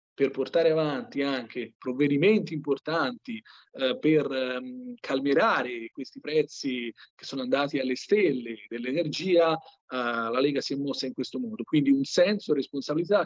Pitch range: 130-165 Hz